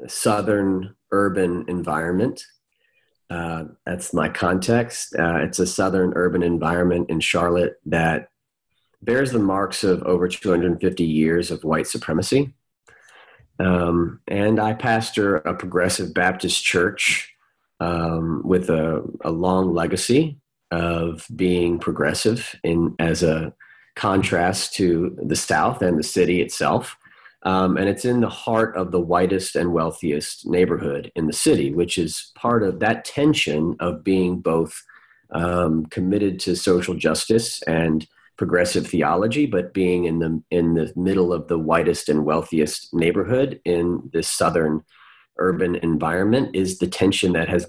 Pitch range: 85-95 Hz